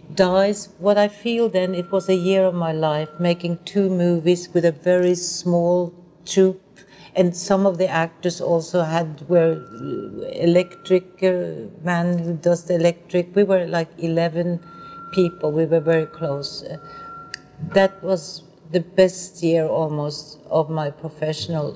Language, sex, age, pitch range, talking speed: English, female, 60-79, 150-175 Hz, 150 wpm